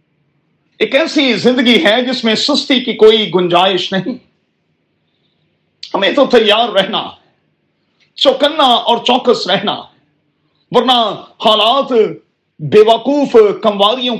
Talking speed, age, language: 100 wpm, 40-59, Urdu